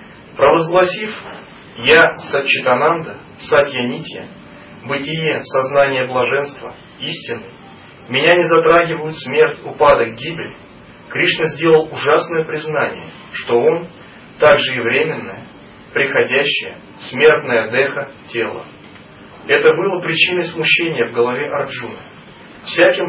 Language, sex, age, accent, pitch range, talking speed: Russian, male, 30-49, native, 130-180 Hz, 95 wpm